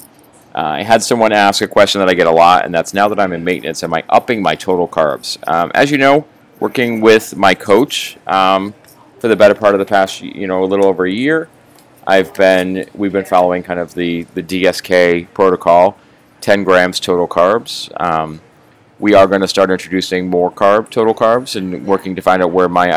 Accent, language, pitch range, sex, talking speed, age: American, English, 90-105 Hz, male, 210 wpm, 30-49